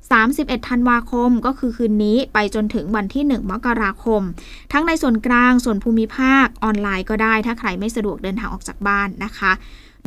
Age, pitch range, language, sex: 20-39, 215-255 Hz, Thai, female